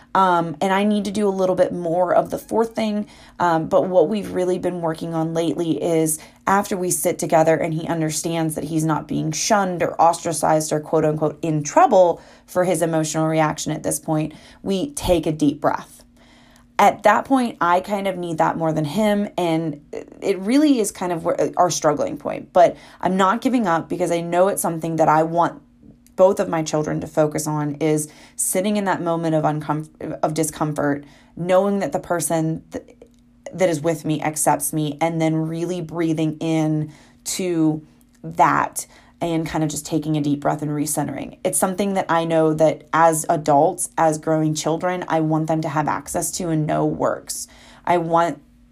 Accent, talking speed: American, 190 wpm